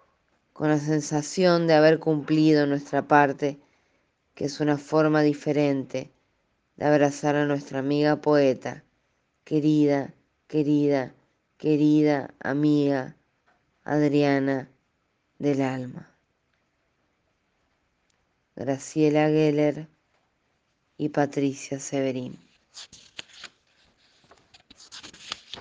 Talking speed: 75 wpm